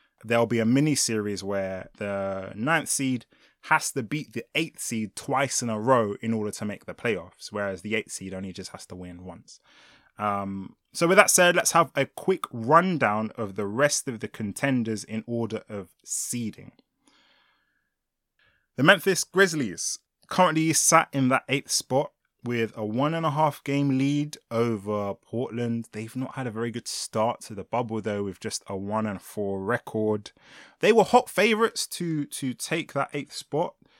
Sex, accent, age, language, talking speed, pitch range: male, British, 20-39, English, 170 wpm, 105-145 Hz